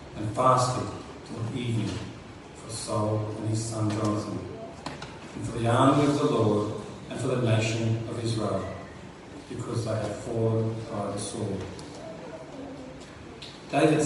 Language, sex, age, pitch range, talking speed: English, male, 40-59, 110-130 Hz, 135 wpm